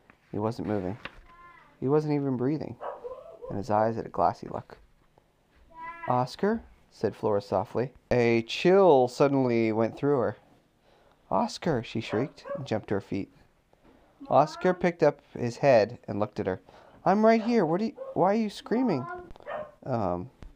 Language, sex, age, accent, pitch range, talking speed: English, male, 30-49, American, 110-185 Hz, 150 wpm